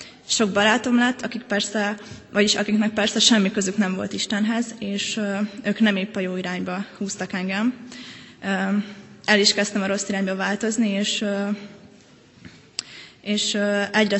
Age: 20-39